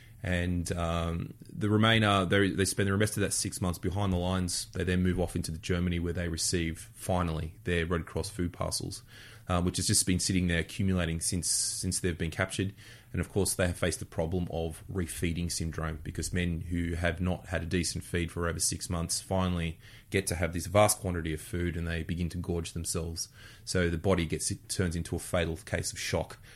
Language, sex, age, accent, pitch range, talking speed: English, male, 20-39, Australian, 85-105 Hz, 215 wpm